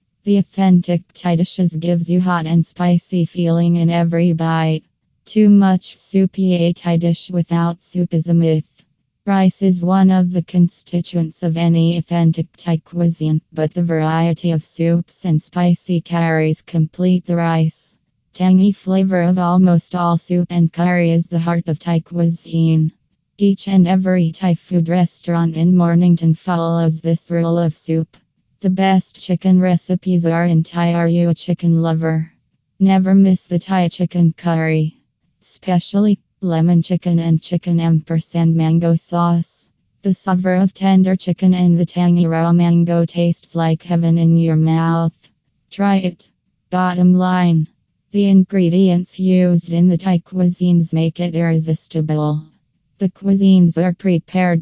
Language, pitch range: English, 165-180 Hz